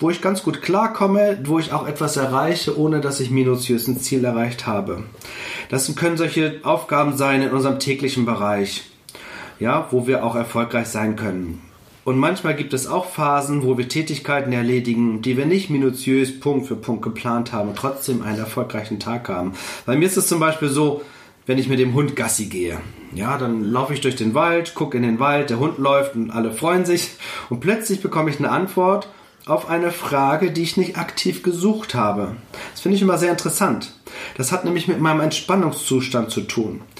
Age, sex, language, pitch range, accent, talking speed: 40-59, male, German, 125-175 Hz, German, 190 wpm